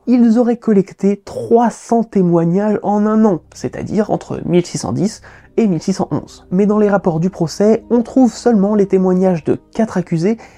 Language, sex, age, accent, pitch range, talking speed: French, male, 20-39, French, 165-220 Hz, 155 wpm